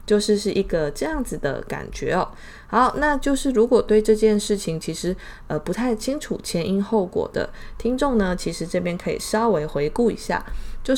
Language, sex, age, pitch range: Chinese, female, 20-39, 160-230 Hz